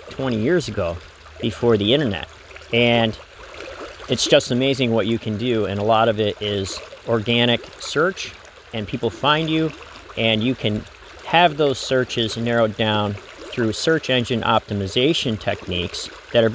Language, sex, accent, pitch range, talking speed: English, male, American, 105-135 Hz, 150 wpm